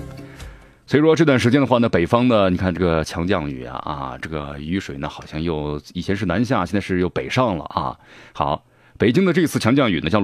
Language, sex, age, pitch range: Chinese, male, 30-49, 85-125 Hz